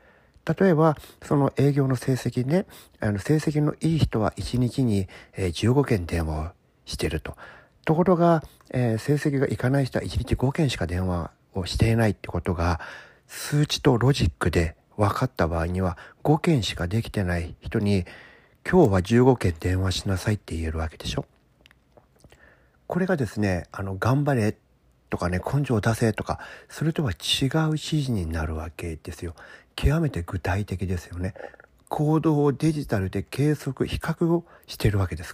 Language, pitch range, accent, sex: Japanese, 90-145 Hz, native, male